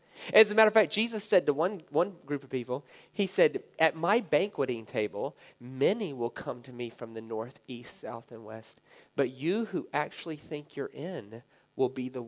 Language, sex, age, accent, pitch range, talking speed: English, male, 40-59, American, 135-215 Hz, 200 wpm